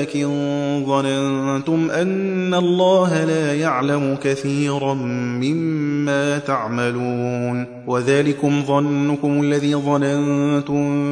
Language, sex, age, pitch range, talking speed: Persian, male, 20-39, 140-170 Hz, 70 wpm